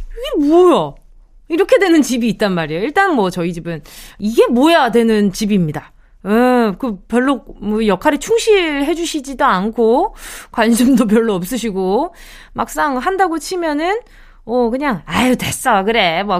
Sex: female